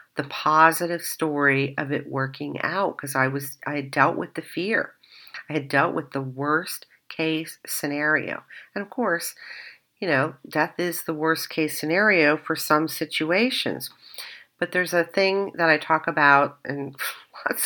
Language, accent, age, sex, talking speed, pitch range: English, American, 50-69, female, 165 wpm, 140-160 Hz